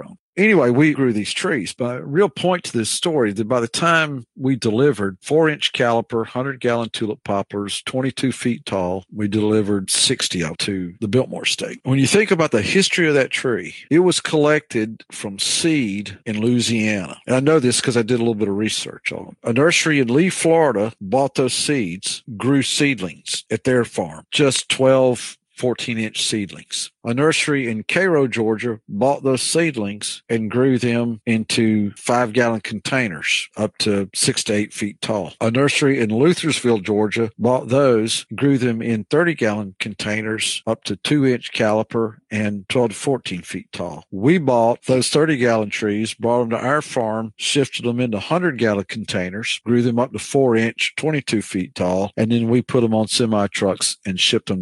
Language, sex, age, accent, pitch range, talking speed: English, male, 50-69, American, 105-135 Hz, 175 wpm